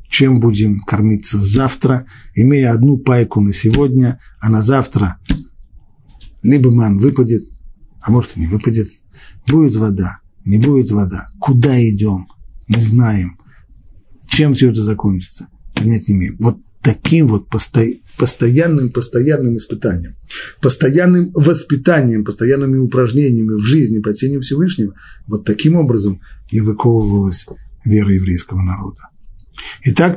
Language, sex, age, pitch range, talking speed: Russian, male, 50-69, 100-135 Hz, 120 wpm